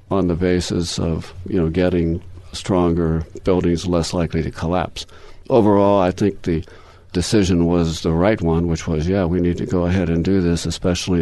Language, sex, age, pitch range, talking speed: English, male, 60-79, 85-95 Hz, 180 wpm